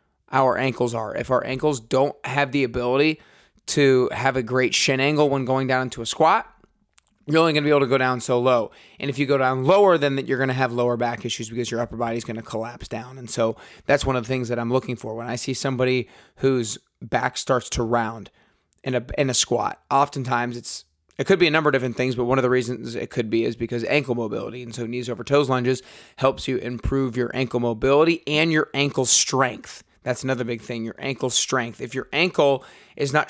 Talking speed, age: 235 wpm, 30-49